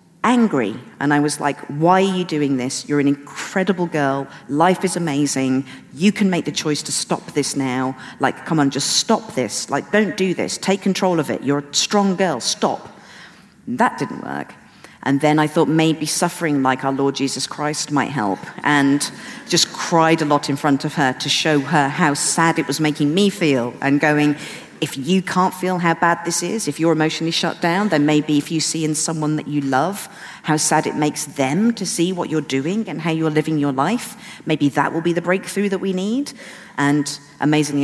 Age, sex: 50-69, female